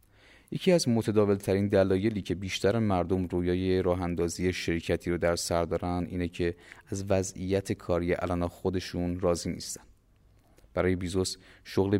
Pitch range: 90-100 Hz